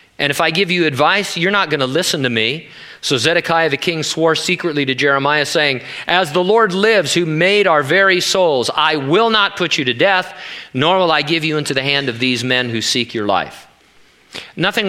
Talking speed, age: 215 wpm, 40-59